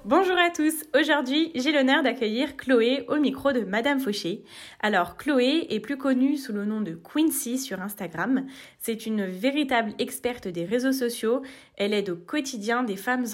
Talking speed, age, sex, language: 170 wpm, 20-39, female, French